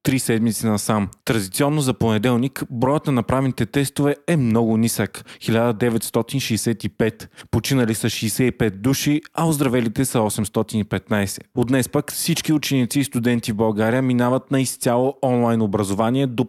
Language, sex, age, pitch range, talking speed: Bulgarian, male, 30-49, 115-135 Hz, 135 wpm